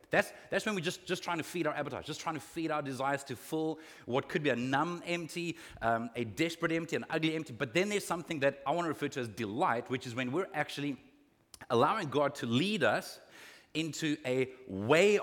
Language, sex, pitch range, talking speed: English, male, 140-175 Hz, 225 wpm